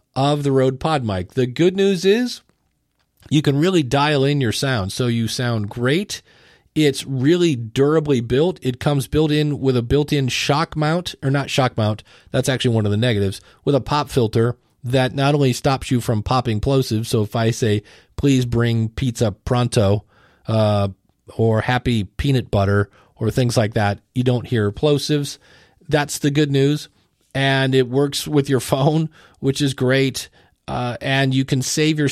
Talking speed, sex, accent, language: 175 wpm, male, American, English